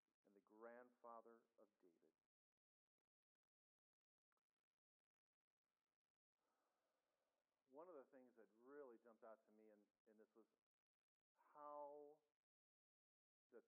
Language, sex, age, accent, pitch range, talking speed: English, male, 50-69, American, 120-175 Hz, 90 wpm